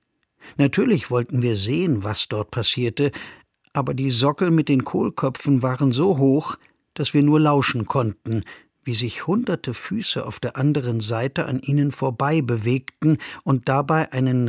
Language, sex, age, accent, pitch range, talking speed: German, male, 50-69, German, 130-175 Hz, 150 wpm